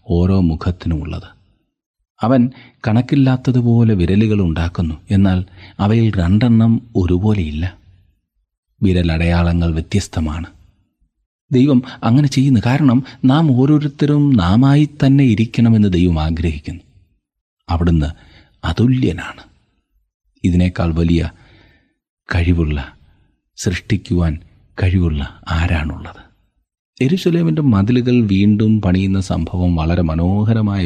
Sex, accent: male, native